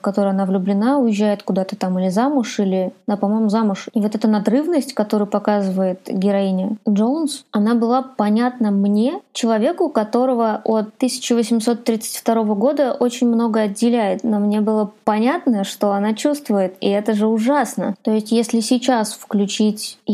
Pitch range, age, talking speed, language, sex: 200-230 Hz, 20-39, 145 wpm, Russian, female